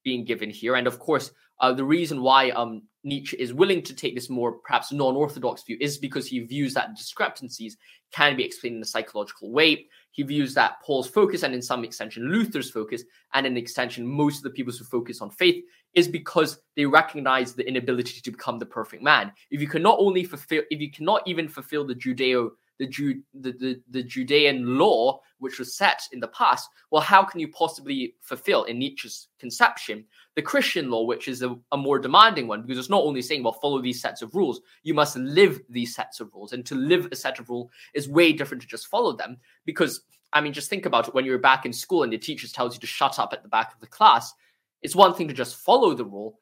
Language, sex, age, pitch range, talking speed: English, male, 20-39, 125-170 Hz, 230 wpm